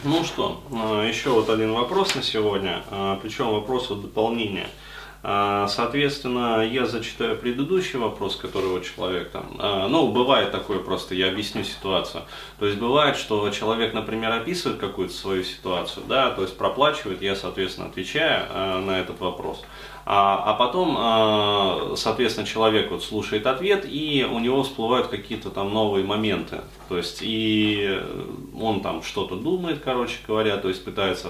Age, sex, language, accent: 20-39, male, Russian, native